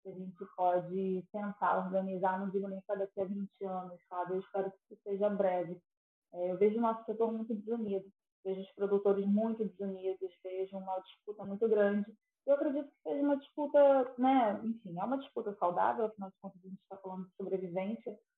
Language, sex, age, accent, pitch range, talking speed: Portuguese, female, 20-39, Brazilian, 190-230 Hz, 190 wpm